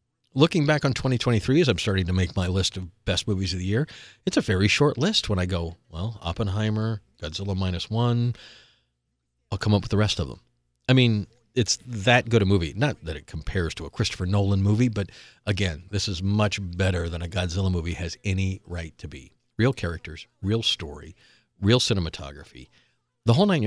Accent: American